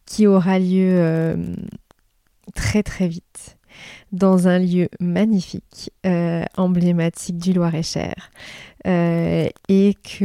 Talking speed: 110 wpm